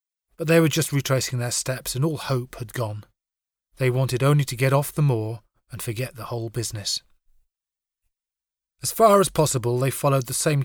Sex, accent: male, British